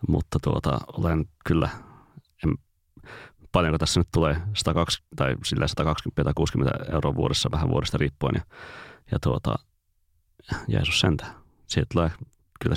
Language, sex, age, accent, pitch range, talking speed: Finnish, male, 30-49, native, 80-100 Hz, 110 wpm